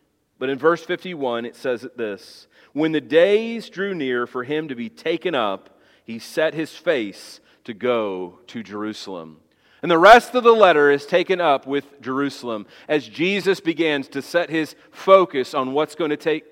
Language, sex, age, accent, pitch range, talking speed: English, male, 40-59, American, 120-165 Hz, 180 wpm